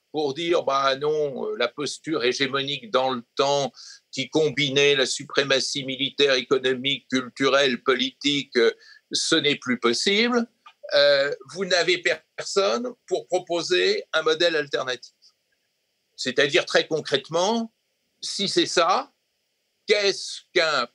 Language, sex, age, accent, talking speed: French, male, 60-79, French, 110 wpm